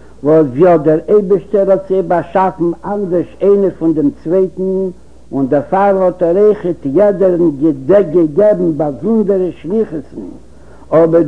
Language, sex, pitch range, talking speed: Hebrew, male, 165-205 Hz, 110 wpm